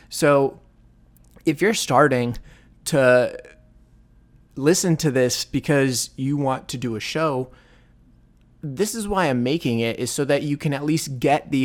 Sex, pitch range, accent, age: male, 120-145 Hz, American, 30-49